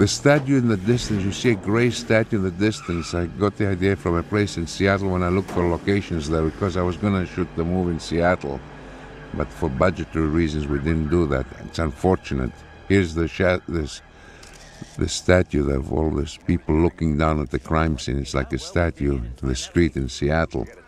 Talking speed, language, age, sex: 215 wpm, English, 60-79, male